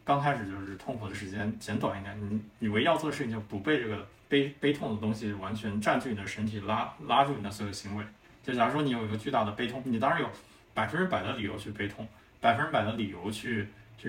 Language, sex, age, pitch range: Chinese, male, 20-39, 105-125 Hz